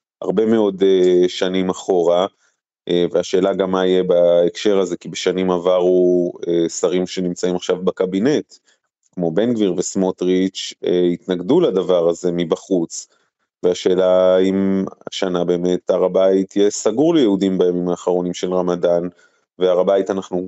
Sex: male